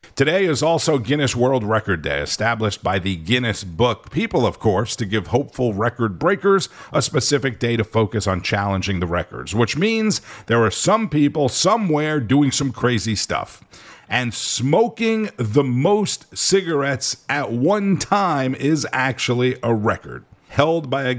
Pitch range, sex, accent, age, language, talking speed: 100-145 Hz, male, American, 50-69, English, 155 wpm